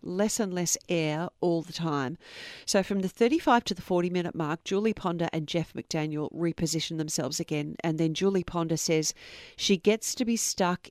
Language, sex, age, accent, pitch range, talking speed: English, female, 40-59, Australian, 165-210 Hz, 180 wpm